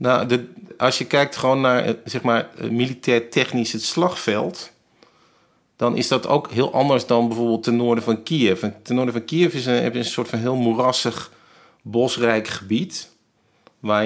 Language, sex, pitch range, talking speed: Dutch, male, 105-125 Hz, 175 wpm